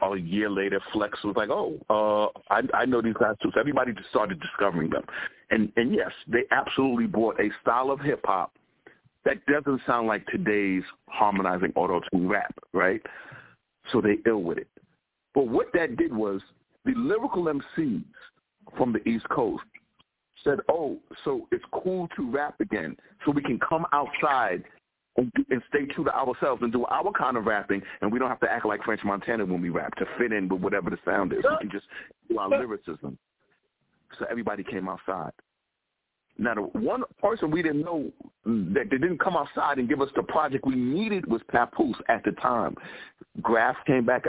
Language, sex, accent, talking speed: English, male, American, 190 wpm